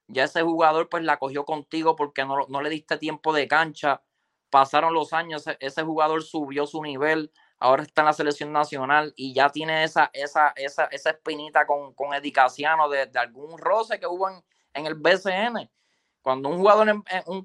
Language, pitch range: Spanish, 145-180 Hz